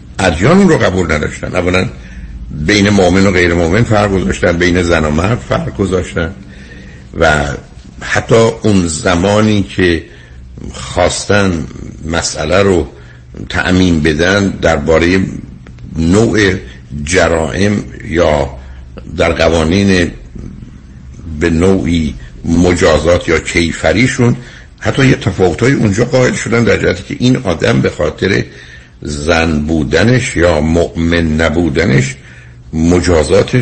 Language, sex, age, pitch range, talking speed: Persian, male, 60-79, 65-95 Hz, 105 wpm